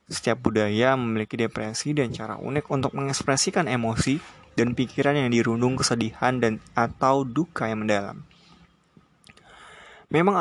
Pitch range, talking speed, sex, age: 110-140 Hz, 120 wpm, male, 20-39